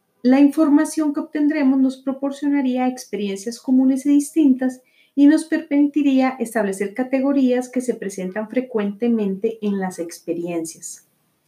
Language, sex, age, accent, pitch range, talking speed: Spanish, female, 30-49, Colombian, 210-275 Hz, 115 wpm